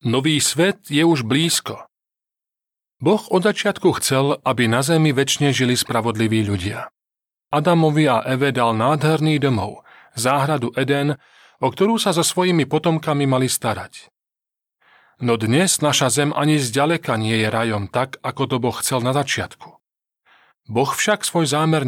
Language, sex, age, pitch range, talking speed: Slovak, male, 30-49, 125-170 Hz, 145 wpm